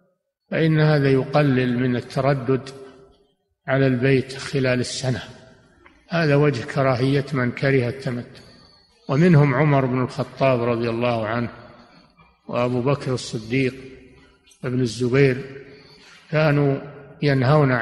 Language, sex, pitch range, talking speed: Arabic, male, 125-145 Hz, 100 wpm